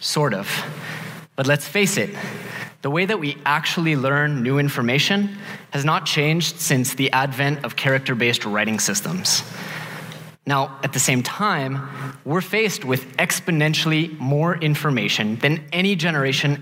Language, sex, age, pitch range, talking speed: English, male, 20-39, 135-170 Hz, 135 wpm